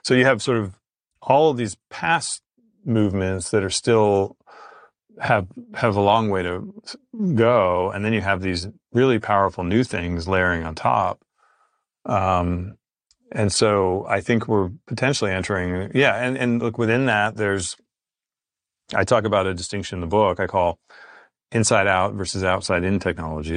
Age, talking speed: 40-59, 160 wpm